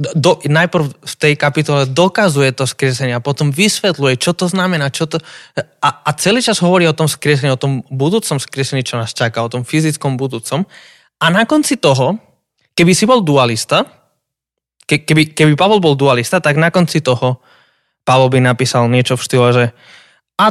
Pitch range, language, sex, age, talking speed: 125-180 Hz, Slovak, male, 20-39, 165 wpm